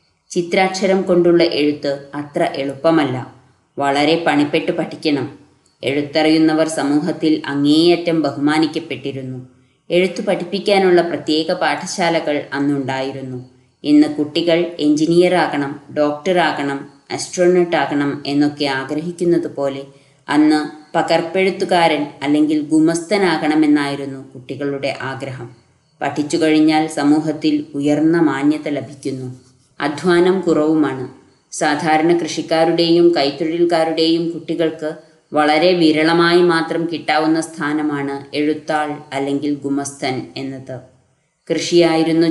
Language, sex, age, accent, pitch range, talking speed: Malayalam, female, 20-39, native, 140-165 Hz, 70 wpm